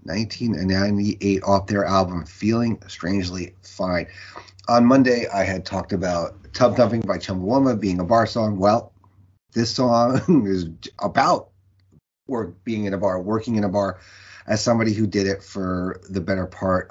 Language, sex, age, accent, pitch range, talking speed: English, male, 40-59, American, 90-110 Hz, 155 wpm